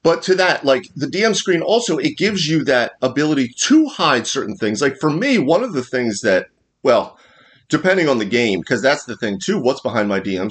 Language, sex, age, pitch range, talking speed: English, male, 30-49, 105-140 Hz, 225 wpm